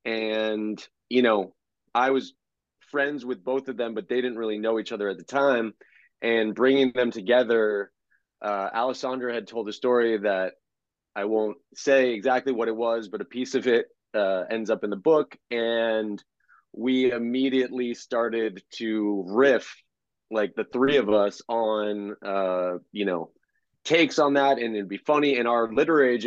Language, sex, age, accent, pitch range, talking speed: English, male, 30-49, American, 105-130 Hz, 170 wpm